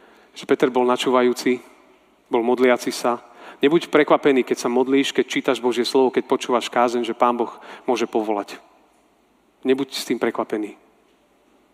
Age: 40-59